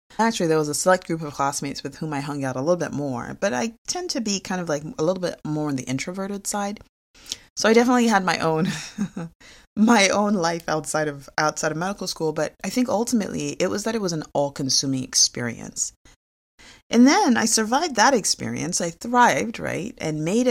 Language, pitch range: English, 150-235 Hz